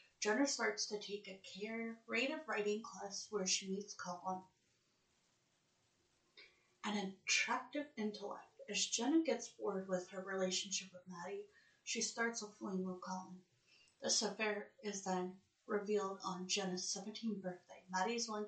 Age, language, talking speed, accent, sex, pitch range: 30-49, English, 145 wpm, American, female, 190-220 Hz